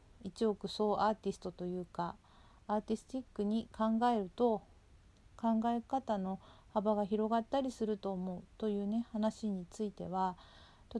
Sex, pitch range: female, 170-215 Hz